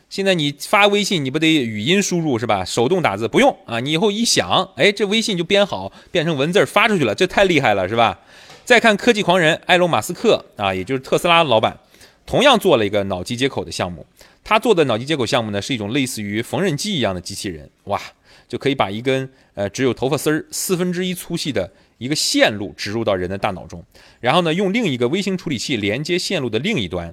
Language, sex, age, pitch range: Chinese, male, 30-49, 110-185 Hz